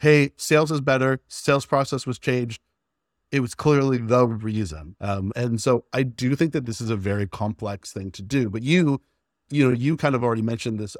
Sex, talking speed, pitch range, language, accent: male, 205 wpm, 105-135 Hz, English, American